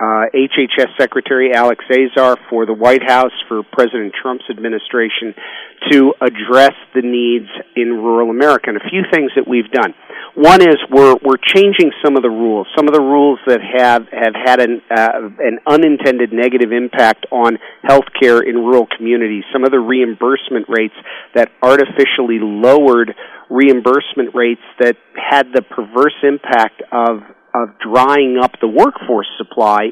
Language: English